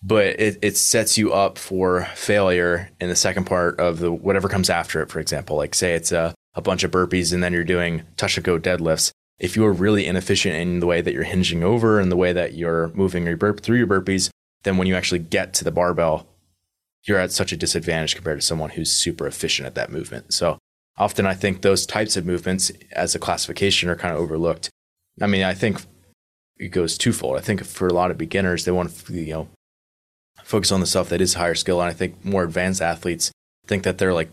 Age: 20-39